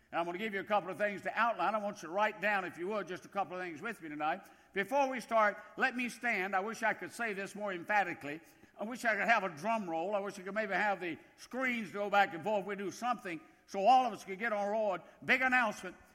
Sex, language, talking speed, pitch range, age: male, English, 280 wpm, 195-255 Hz, 60-79